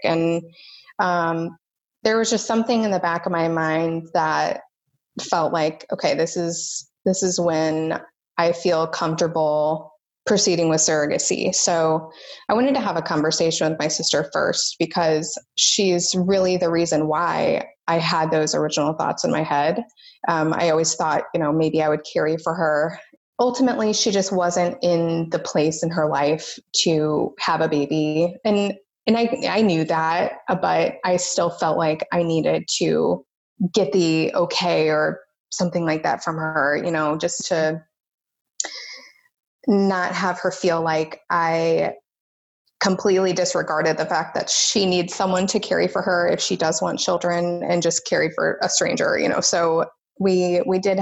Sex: female